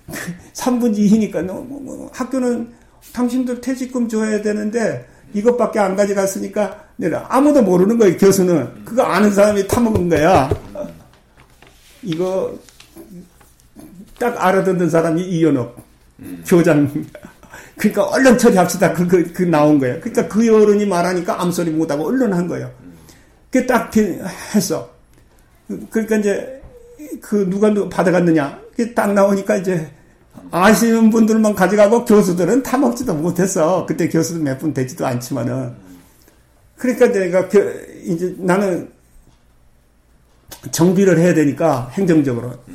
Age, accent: 50-69, native